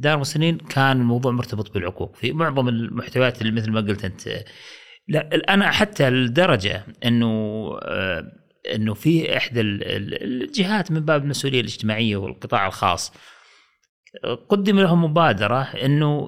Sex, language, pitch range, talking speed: male, Arabic, 115-155 Hz, 120 wpm